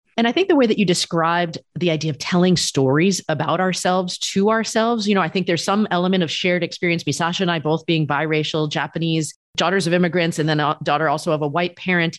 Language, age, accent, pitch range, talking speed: English, 30-49, American, 155-205 Hz, 225 wpm